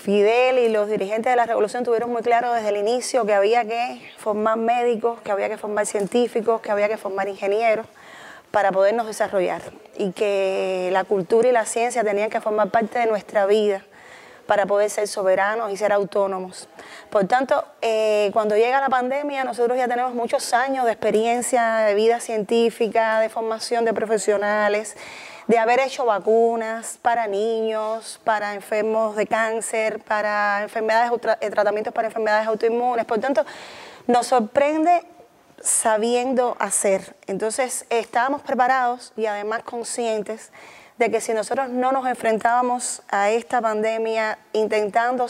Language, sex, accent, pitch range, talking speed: Spanish, female, American, 215-240 Hz, 150 wpm